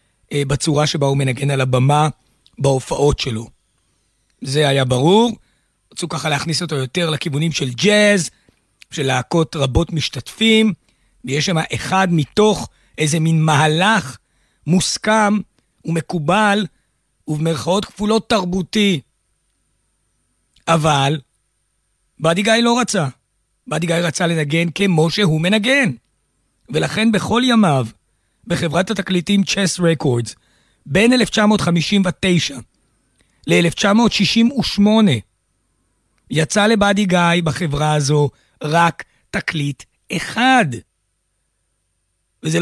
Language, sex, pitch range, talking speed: Hebrew, male, 145-195 Hz, 95 wpm